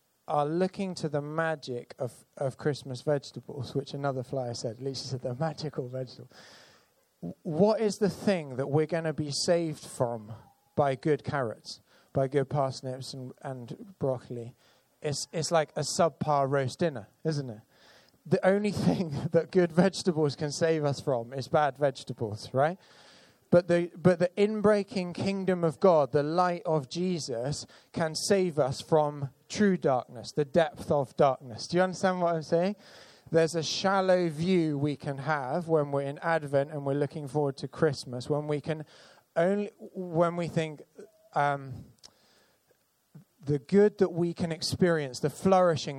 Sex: male